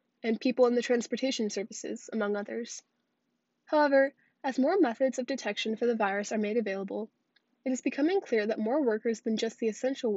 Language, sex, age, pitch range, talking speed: English, female, 10-29, 215-265 Hz, 185 wpm